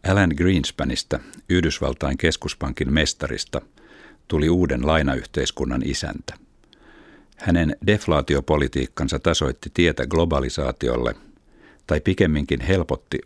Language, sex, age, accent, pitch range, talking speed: Finnish, male, 60-79, native, 65-85 Hz, 75 wpm